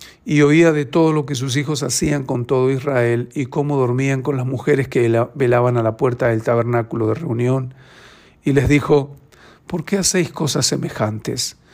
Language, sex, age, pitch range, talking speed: Spanish, male, 50-69, 125-155 Hz, 180 wpm